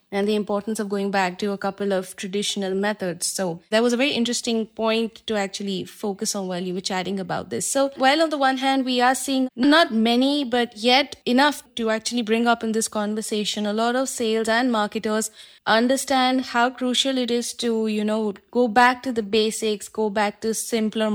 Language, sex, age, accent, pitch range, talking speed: English, female, 20-39, Indian, 195-230 Hz, 205 wpm